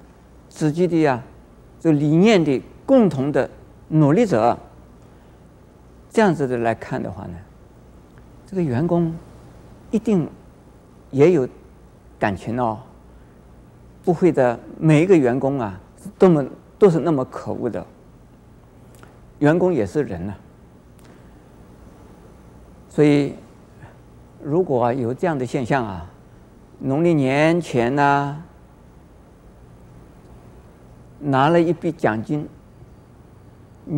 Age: 50-69